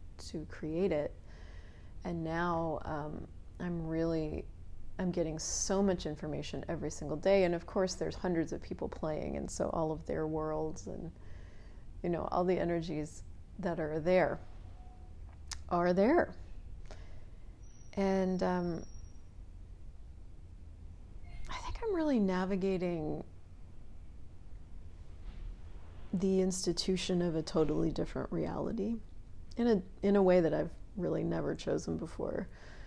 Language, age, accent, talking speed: English, 30-49, American, 120 wpm